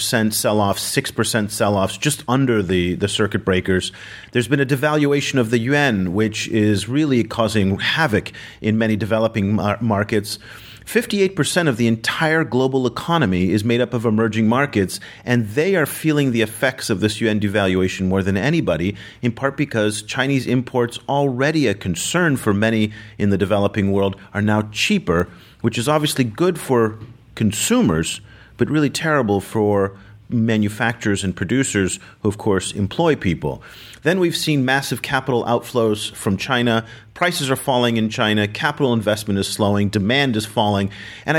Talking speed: 155 wpm